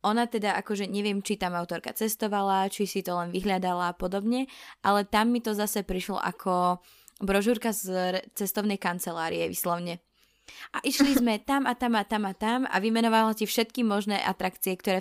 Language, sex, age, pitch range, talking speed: Slovak, female, 20-39, 185-215 Hz, 175 wpm